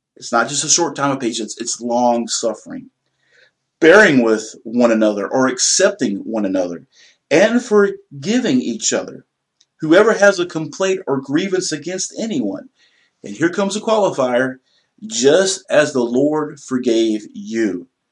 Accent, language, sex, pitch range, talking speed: American, English, male, 120-175 Hz, 140 wpm